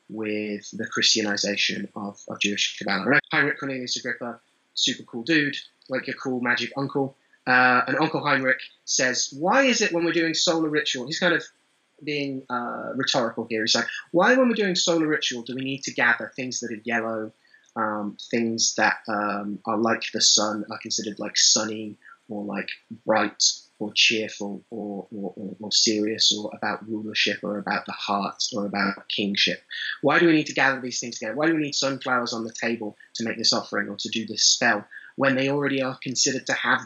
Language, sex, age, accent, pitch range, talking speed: English, male, 20-39, British, 105-135 Hz, 190 wpm